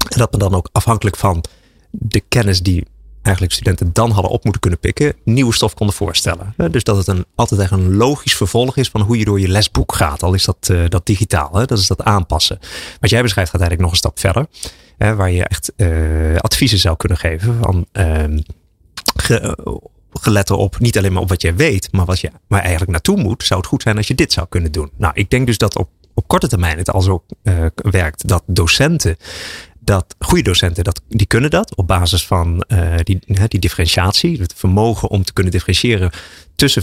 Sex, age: male, 30-49